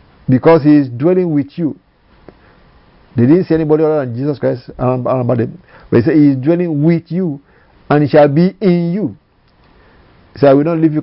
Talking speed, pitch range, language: 195 wpm, 125-160 Hz, English